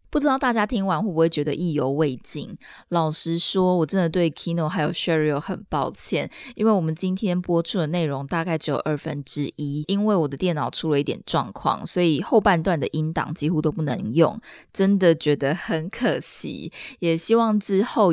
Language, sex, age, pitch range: Chinese, female, 20-39, 155-200 Hz